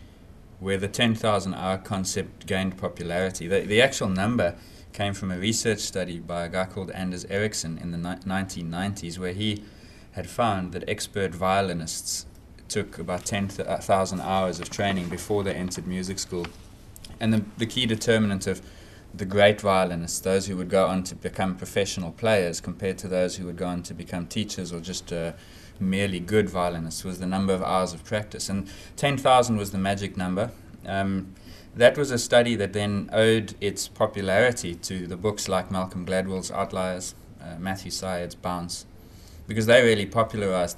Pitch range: 90-105 Hz